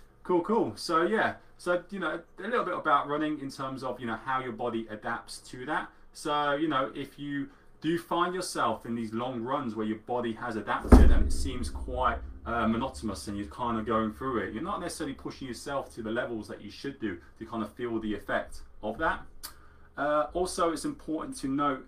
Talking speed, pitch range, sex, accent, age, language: 215 wpm, 110-155 Hz, male, British, 30-49, English